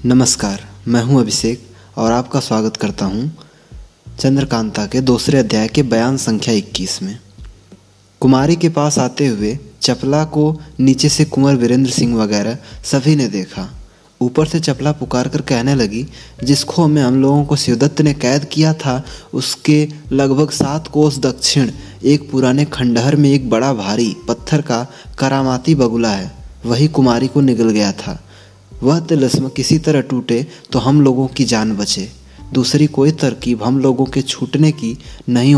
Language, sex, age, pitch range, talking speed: Hindi, male, 20-39, 115-145 Hz, 160 wpm